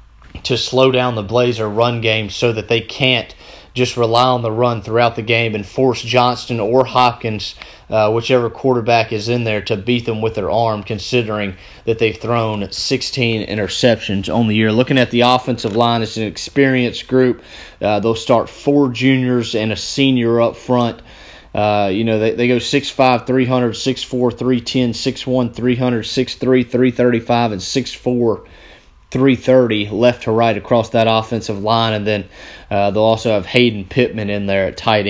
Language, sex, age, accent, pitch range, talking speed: English, male, 30-49, American, 110-125 Hz, 190 wpm